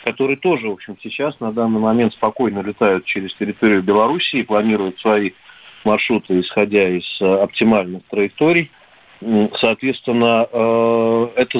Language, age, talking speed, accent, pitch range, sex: Russian, 40-59, 130 wpm, native, 105-135 Hz, male